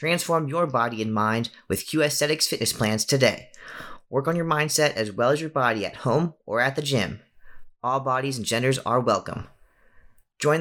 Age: 30-49